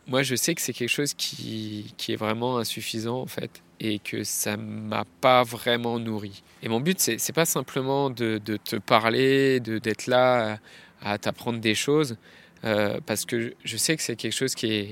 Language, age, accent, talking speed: French, 20-39, French, 210 wpm